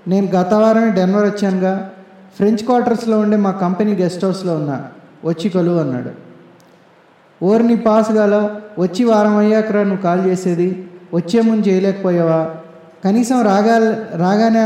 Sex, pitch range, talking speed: male, 170-210 Hz, 125 wpm